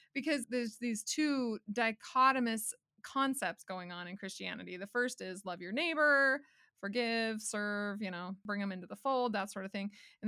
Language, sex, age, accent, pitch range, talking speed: English, female, 20-39, American, 205-270 Hz, 175 wpm